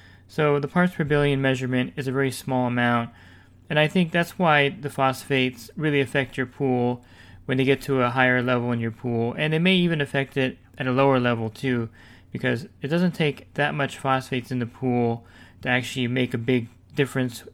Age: 20-39